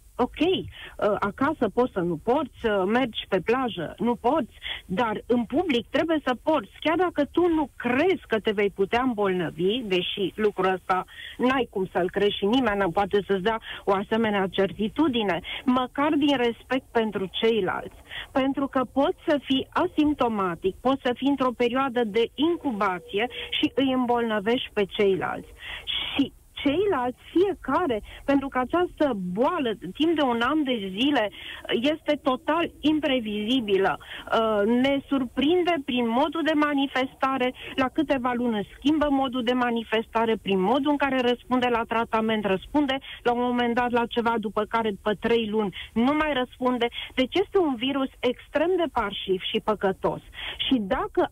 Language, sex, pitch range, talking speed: Romanian, female, 210-280 Hz, 150 wpm